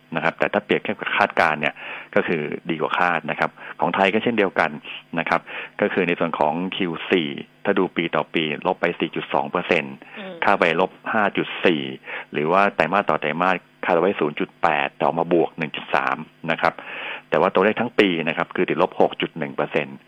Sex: male